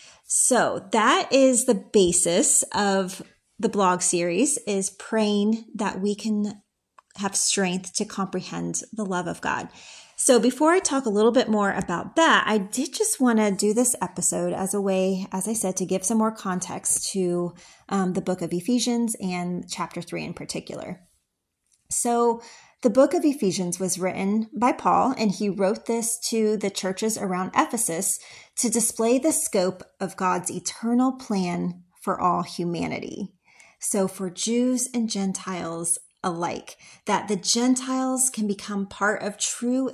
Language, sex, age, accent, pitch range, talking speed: English, female, 30-49, American, 185-230 Hz, 160 wpm